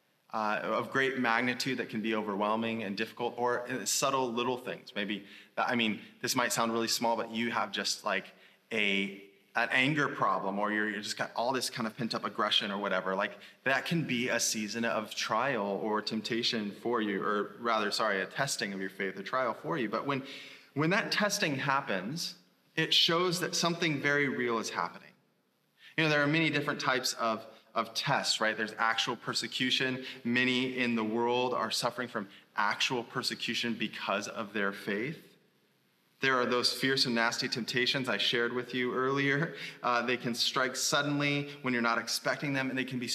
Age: 20-39